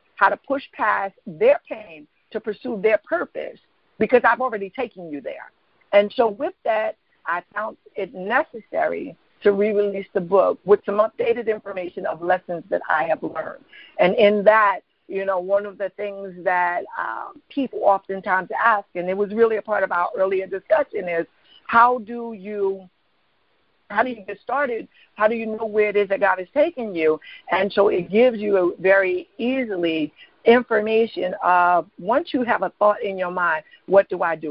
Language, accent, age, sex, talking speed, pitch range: English, American, 50-69, female, 185 wpm, 185-230 Hz